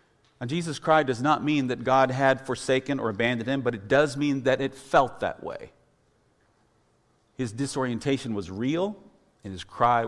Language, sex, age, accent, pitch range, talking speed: English, male, 50-69, American, 125-170 Hz, 175 wpm